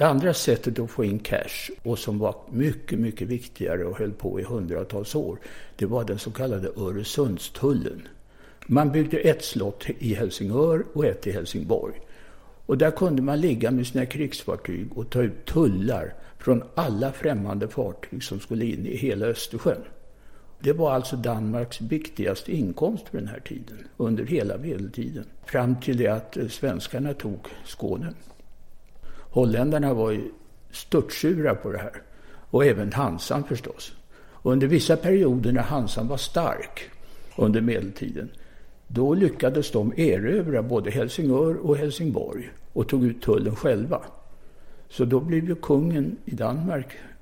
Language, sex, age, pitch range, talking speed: English, male, 60-79, 110-145 Hz, 150 wpm